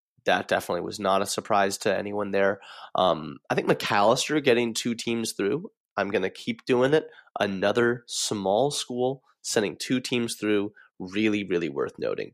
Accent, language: American, English